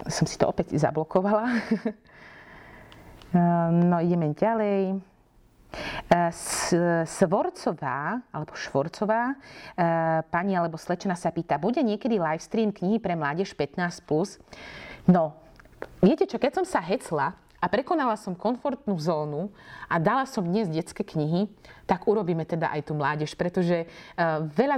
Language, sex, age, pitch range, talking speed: Slovak, female, 30-49, 160-195 Hz, 120 wpm